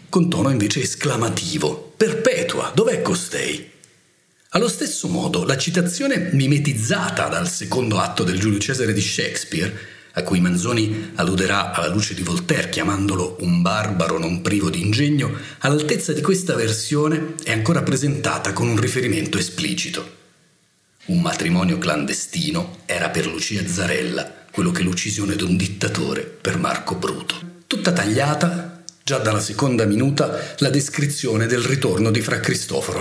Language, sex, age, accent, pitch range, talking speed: Italian, male, 40-59, native, 105-160 Hz, 140 wpm